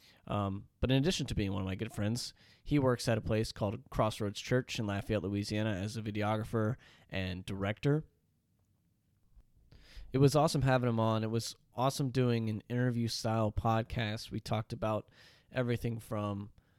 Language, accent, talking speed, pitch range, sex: English, American, 165 wpm, 105-125 Hz, male